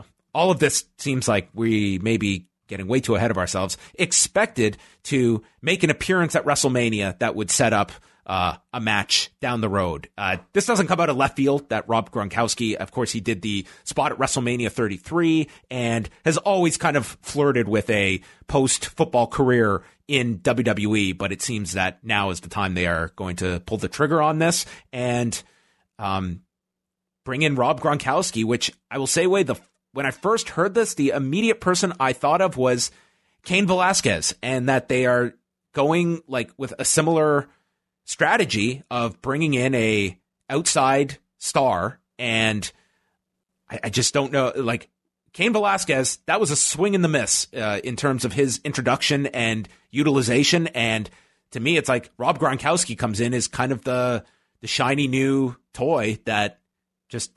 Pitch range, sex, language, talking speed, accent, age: 110-145 Hz, male, English, 175 wpm, American, 30-49